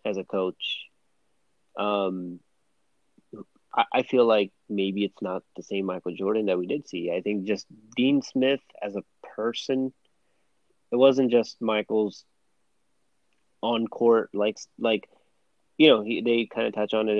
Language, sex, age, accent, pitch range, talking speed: English, male, 30-49, American, 105-120 Hz, 145 wpm